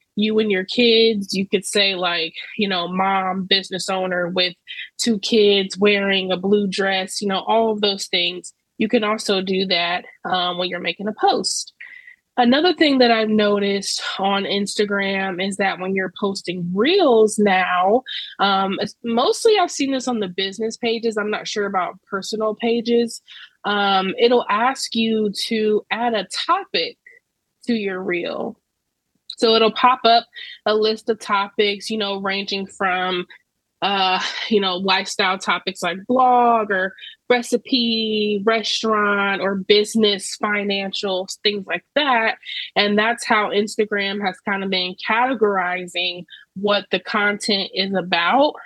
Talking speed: 145 wpm